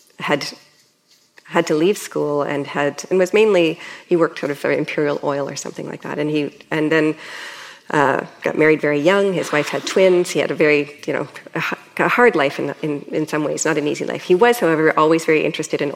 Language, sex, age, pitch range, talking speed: English, female, 40-59, 150-175 Hz, 230 wpm